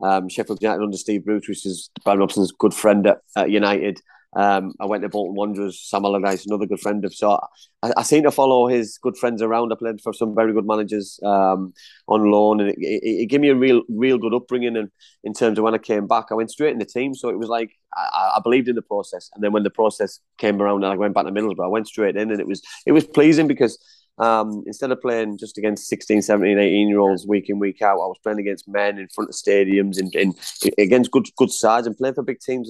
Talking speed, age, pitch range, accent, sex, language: 260 wpm, 20-39, 100-115 Hz, British, male, English